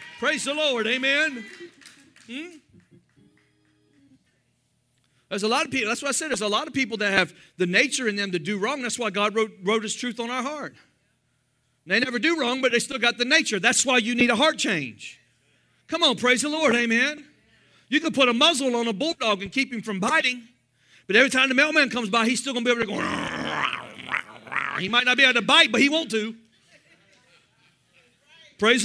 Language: English